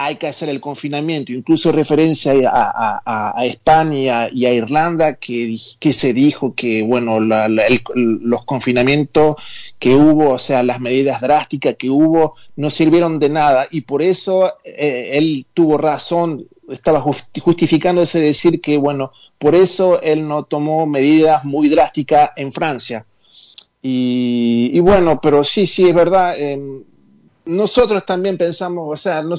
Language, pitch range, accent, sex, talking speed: Spanish, 135-175 Hz, Argentinian, male, 145 wpm